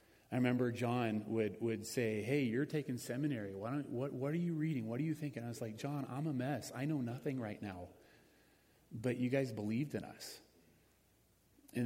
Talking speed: 205 wpm